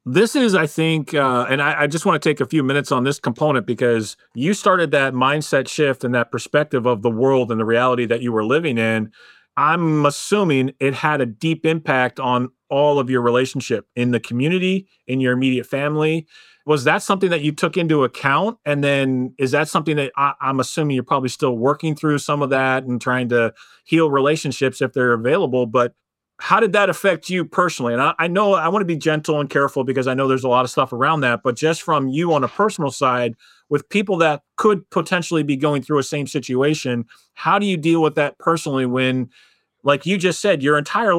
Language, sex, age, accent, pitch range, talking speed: English, male, 30-49, American, 130-160 Hz, 220 wpm